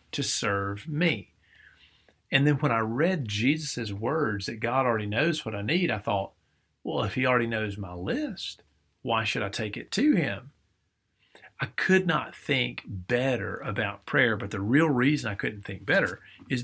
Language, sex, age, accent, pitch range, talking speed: English, male, 40-59, American, 100-135 Hz, 175 wpm